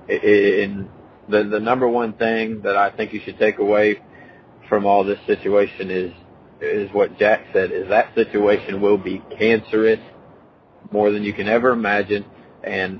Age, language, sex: 30-49, English, male